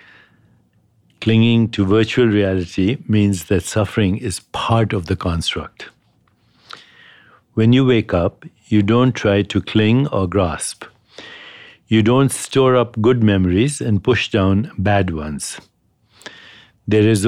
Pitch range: 100-115 Hz